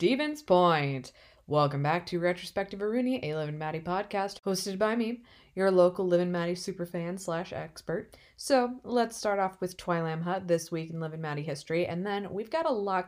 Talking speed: 195 wpm